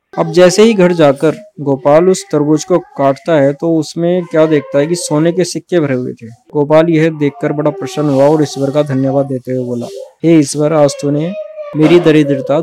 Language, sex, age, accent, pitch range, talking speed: Hindi, male, 20-39, native, 140-170 Hz, 200 wpm